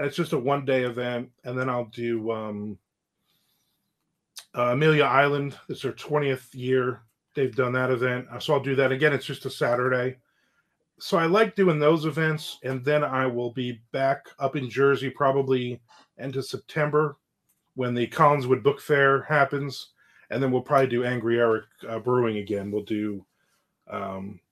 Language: English